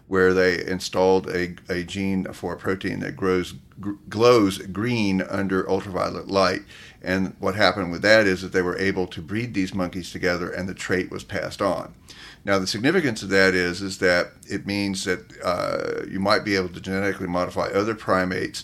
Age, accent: 50-69, American